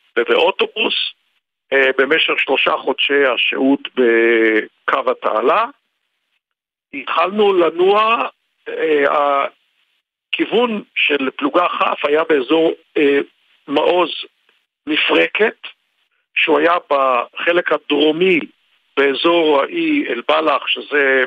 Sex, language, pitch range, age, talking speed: male, Hebrew, 135-200 Hz, 50-69, 75 wpm